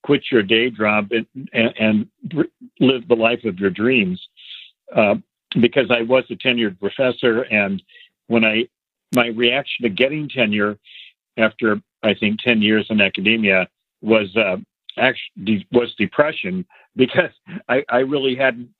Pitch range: 105-130 Hz